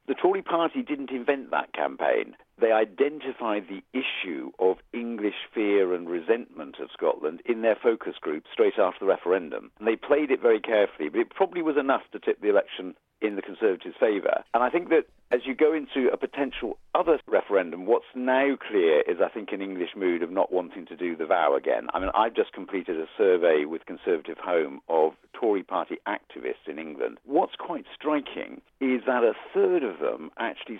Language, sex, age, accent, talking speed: English, male, 50-69, British, 195 wpm